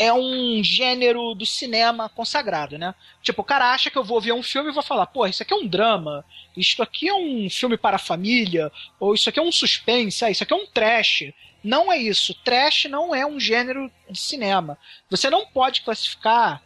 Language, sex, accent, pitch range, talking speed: Portuguese, male, Brazilian, 210-275 Hz, 215 wpm